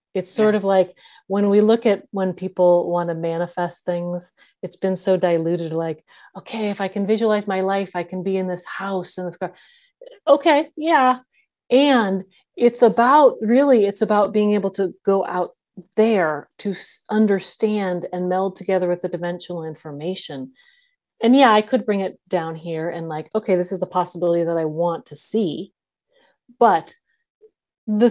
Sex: female